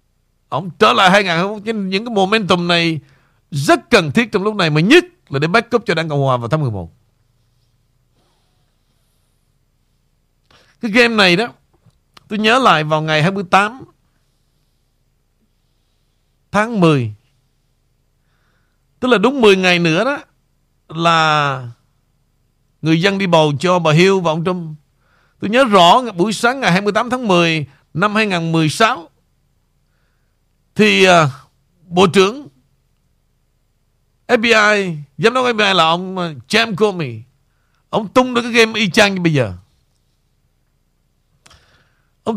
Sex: male